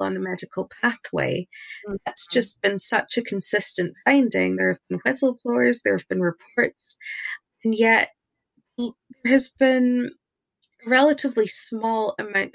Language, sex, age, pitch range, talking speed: English, female, 20-39, 190-270 Hz, 135 wpm